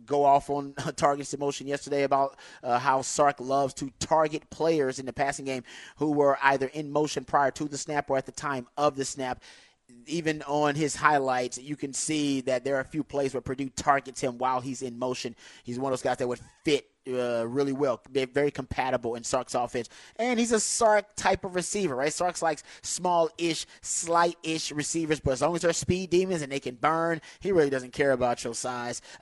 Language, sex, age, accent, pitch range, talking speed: English, male, 30-49, American, 130-160 Hz, 215 wpm